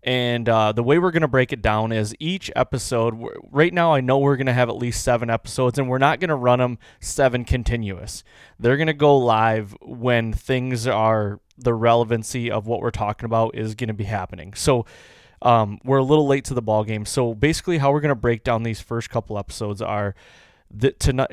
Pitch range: 110-130 Hz